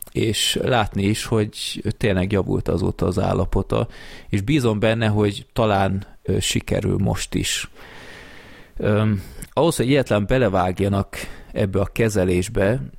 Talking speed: 115 wpm